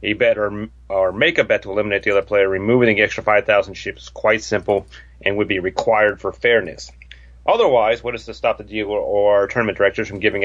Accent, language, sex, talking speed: American, English, male, 220 wpm